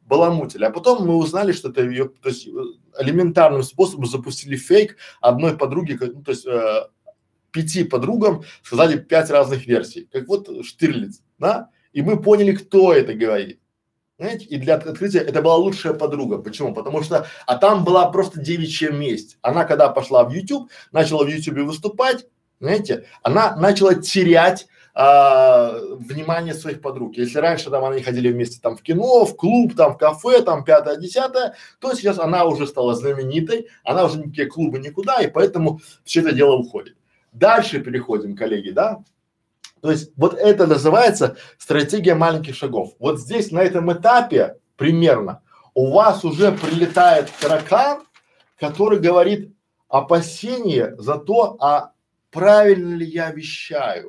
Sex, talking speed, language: male, 150 wpm, Russian